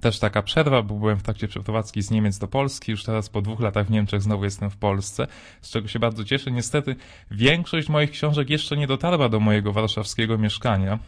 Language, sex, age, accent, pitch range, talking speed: Polish, male, 20-39, native, 100-120 Hz, 210 wpm